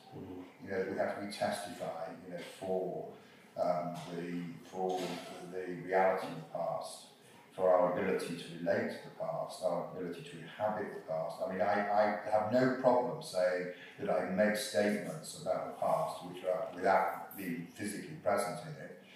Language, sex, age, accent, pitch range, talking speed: English, male, 40-59, British, 90-110 Hz, 170 wpm